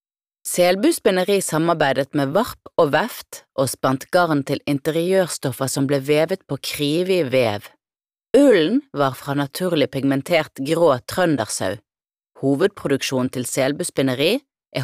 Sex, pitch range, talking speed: female, 135-190 Hz, 115 wpm